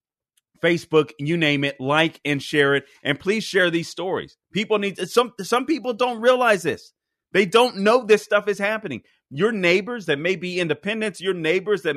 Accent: American